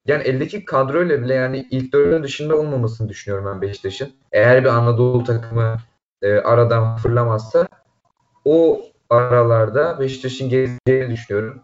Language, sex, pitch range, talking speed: Turkish, male, 115-140 Hz, 125 wpm